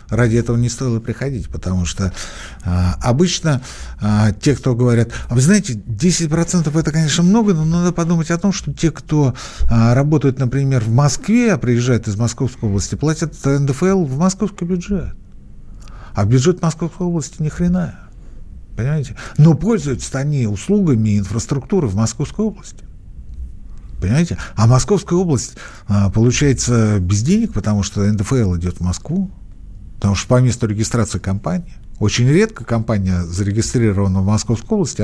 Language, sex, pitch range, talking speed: Russian, male, 110-170 Hz, 140 wpm